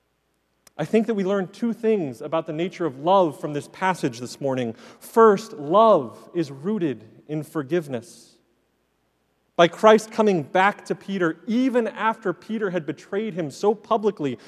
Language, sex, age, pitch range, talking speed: English, male, 30-49, 155-220 Hz, 155 wpm